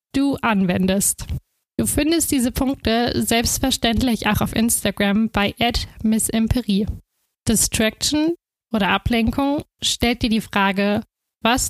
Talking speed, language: 105 wpm, German